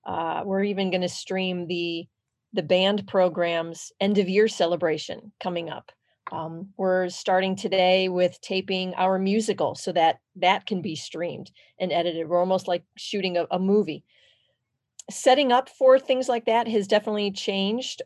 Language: English